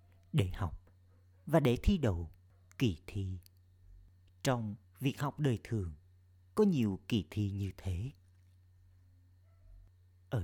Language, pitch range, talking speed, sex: Vietnamese, 90-110 Hz, 115 wpm, male